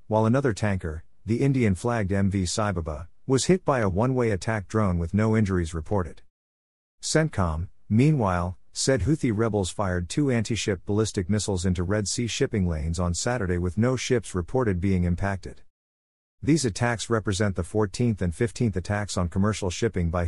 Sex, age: male, 50-69